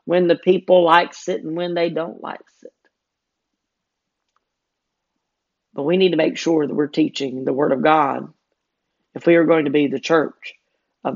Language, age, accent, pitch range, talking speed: English, 40-59, American, 145-165 Hz, 175 wpm